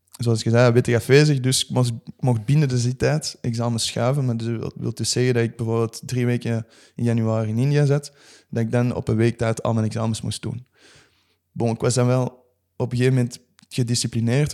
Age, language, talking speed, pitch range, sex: 20-39, Dutch, 215 wpm, 115-130 Hz, male